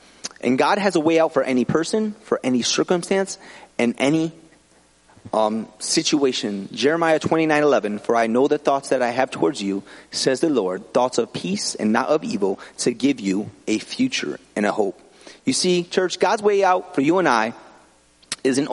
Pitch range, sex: 105-165 Hz, male